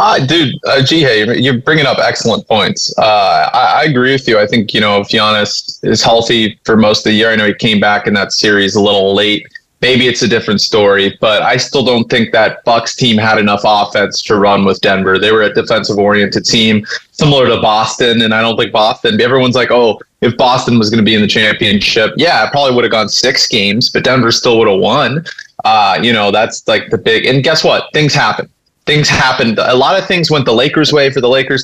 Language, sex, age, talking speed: English, male, 20-39, 235 wpm